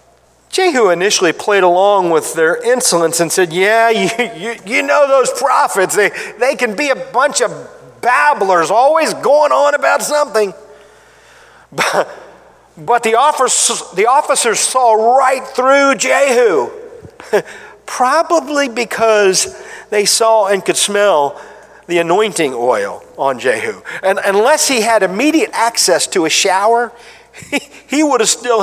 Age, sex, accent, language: 50-69, male, American, English